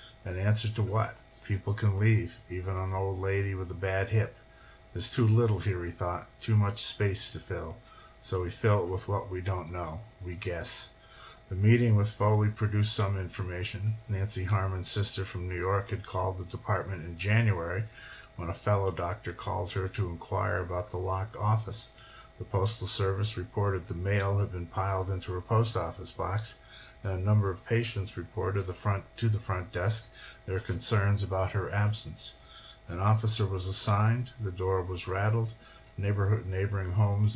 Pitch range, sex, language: 95-105 Hz, male, English